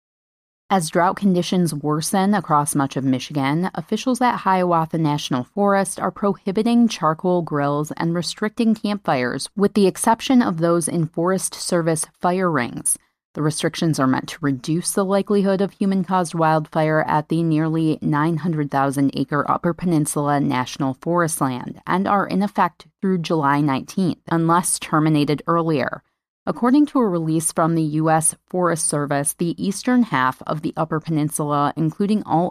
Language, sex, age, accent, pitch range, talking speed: English, female, 30-49, American, 150-185 Hz, 145 wpm